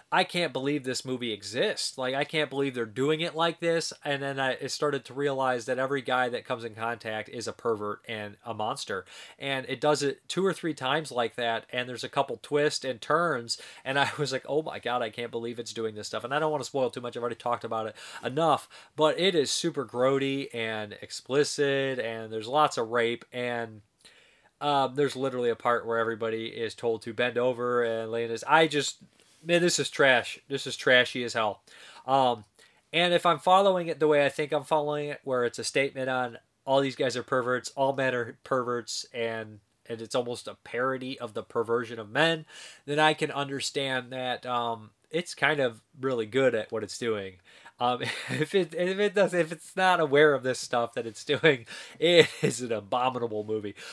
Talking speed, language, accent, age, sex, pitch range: 210 wpm, English, American, 30-49, male, 115-150 Hz